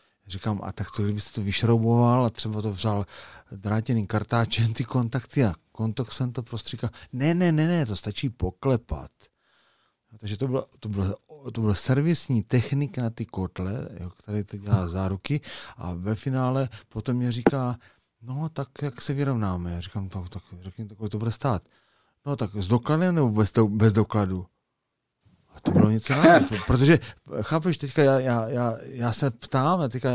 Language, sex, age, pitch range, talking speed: Czech, male, 40-59, 100-130 Hz, 175 wpm